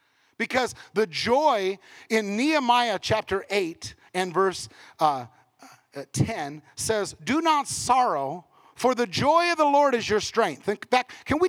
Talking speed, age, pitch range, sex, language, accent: 140 wpm, 40-59, 190-255 Hz, male, English, American